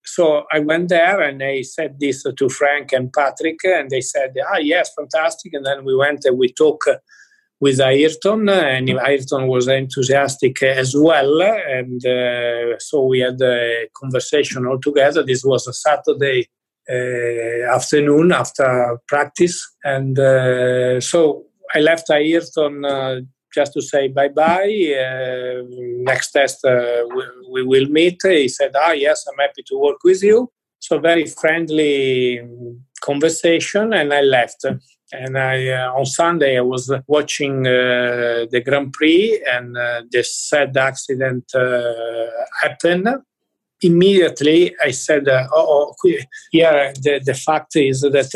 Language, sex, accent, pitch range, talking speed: English, male, Italian, 130-155 Hz, 150 wpm